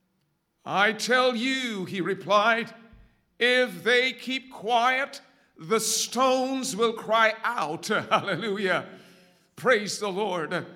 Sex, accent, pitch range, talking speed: male, American, 200-255 Hz, 100 wpm